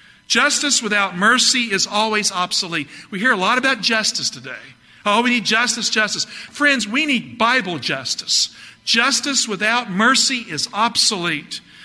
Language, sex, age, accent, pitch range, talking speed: English, male, 50-69, American, 165-230 Hz, 140 wpm